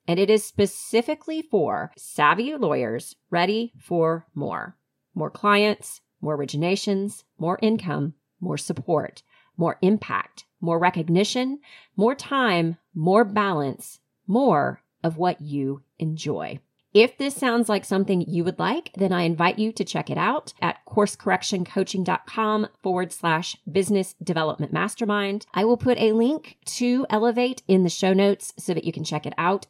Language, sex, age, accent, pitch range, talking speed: English, female, 30-49, American, 165-215 Hz, 145 wpm